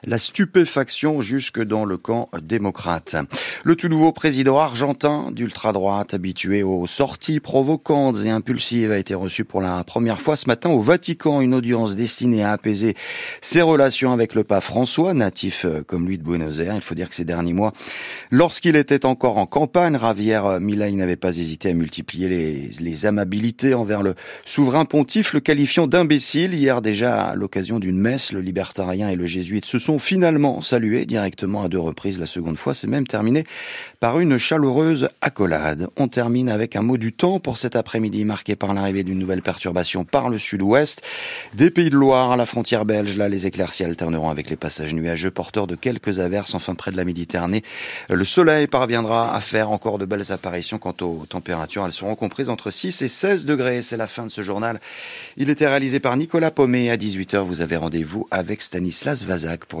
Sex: male